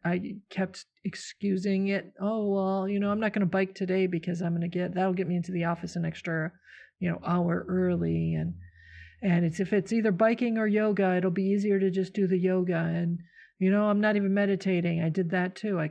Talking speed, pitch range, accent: 225 wpm, 170-200 Hz, American